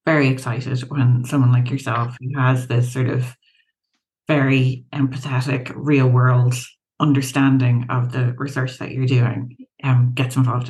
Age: 30-49